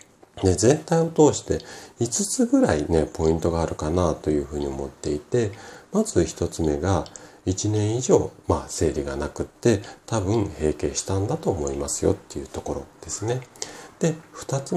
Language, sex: Japanese, male